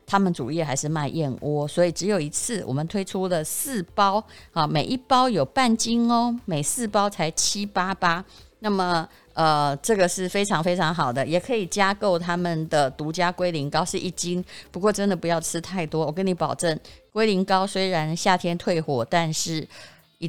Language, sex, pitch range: Chinese, female, 155-205 Hz